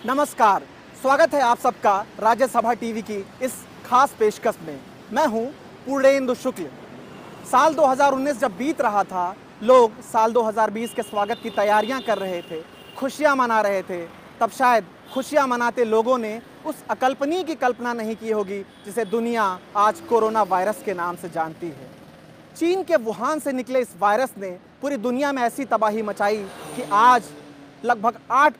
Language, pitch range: Hindi, 195-250 Hz